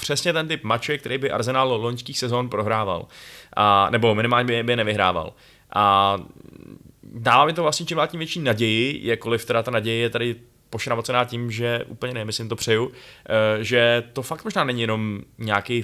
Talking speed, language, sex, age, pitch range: 165 wpm, Czech, male, 20-39, 110-130 Hz